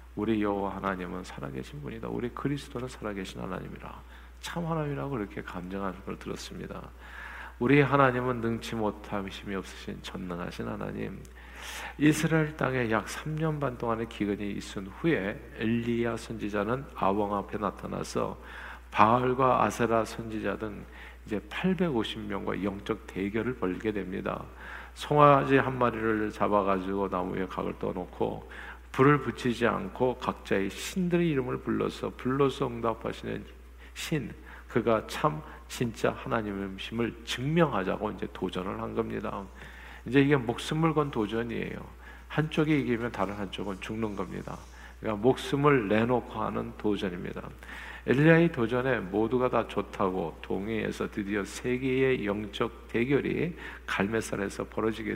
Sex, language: male, Korean